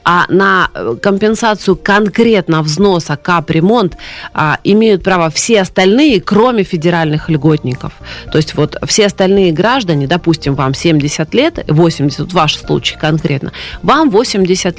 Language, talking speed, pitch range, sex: Russian, 130 wpm, 160-200 Hz, female